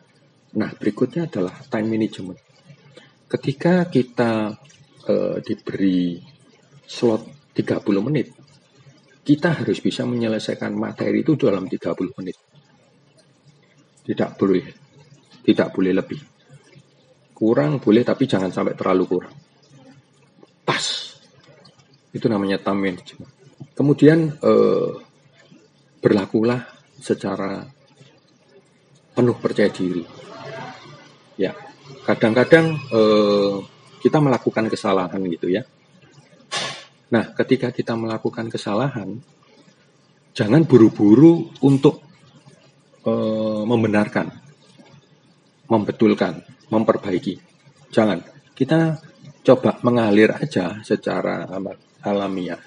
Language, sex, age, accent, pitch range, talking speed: Indonesian, male, 40-59, native, 105-145 Hz, 80 wpm